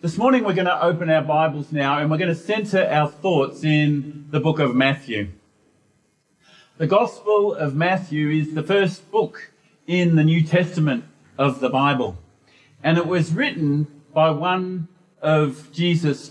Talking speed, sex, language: 160 wpm, male, English